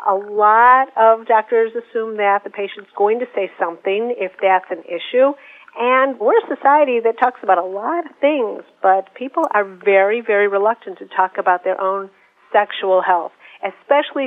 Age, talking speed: 50-69, 170 wpm